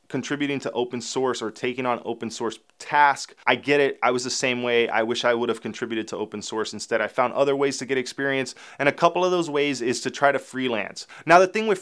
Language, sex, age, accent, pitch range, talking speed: English, male, 20-39, American, 125-155 Hz, 255 wpm